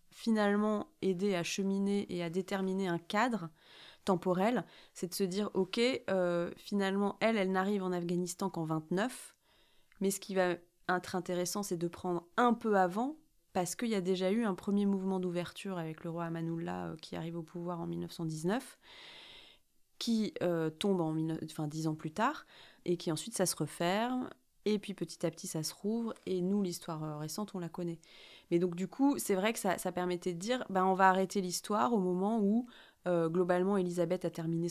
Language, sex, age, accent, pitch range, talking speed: French, female, 30-49, French, 170-210 Hz, 195 wpm